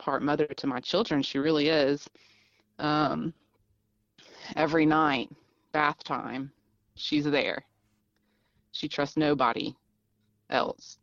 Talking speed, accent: 105 wpm, American